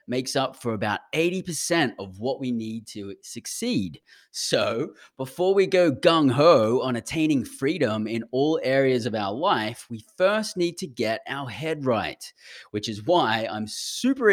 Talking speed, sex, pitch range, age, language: 165 wpm, male, 120-175 Hz, 20-39, English